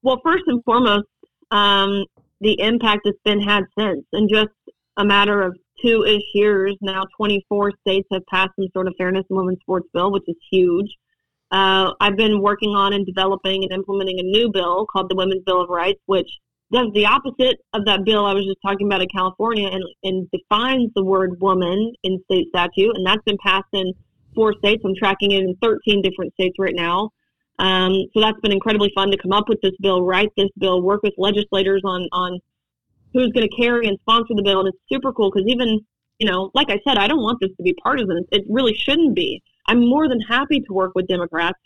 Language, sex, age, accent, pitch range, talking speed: English, female, 30-49, American, 185-215 Hz, 215 wpm